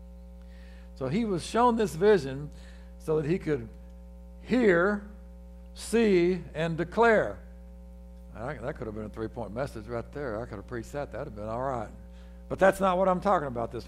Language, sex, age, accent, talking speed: English, male, 60-79, American, 180 wpm